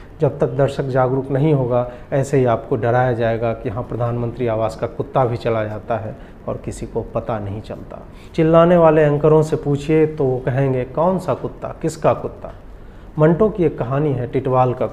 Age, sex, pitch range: 40-59, male, 125-150 Hz